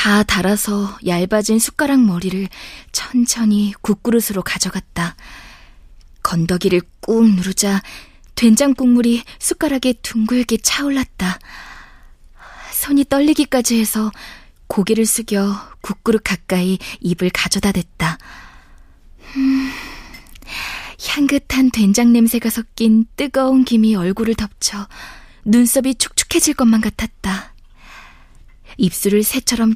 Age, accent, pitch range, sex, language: 20-39, native, 190-240 Hz, female, Korean